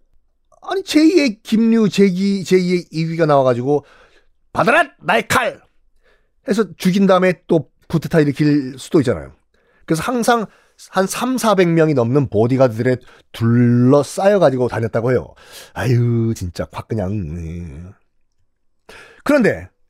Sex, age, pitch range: male, 40-59, 130-215 Hz